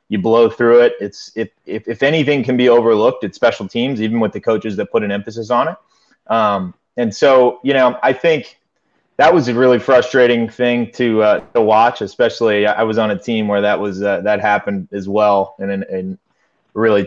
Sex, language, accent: male, English, American